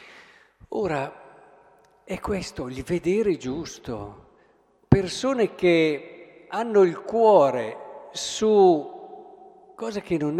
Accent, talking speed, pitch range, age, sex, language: native, 85 wpm, 150-205 Hz, 50-69, male, Italian